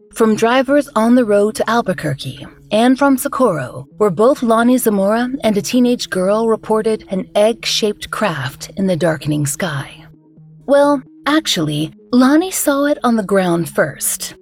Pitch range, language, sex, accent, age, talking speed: 170-245 Hz, English, female, American, 30-49, 145 wpm